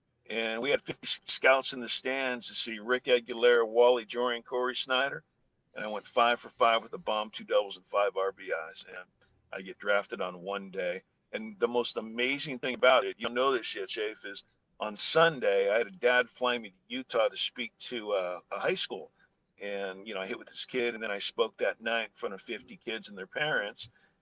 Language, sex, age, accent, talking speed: English, male, 50-69, American, 220 wpm